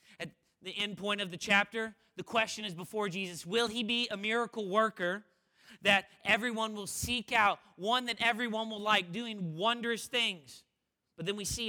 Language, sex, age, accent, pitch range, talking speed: English, male, 30-49, American, 170-225 Hz, 175 wpm